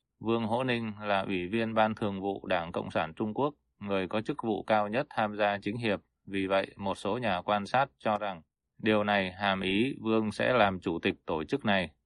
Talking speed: 225 wpm